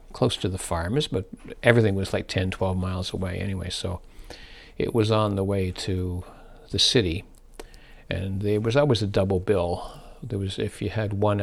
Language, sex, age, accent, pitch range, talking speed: English, male, 60-79, American, 90-110 Hz, 185 wpm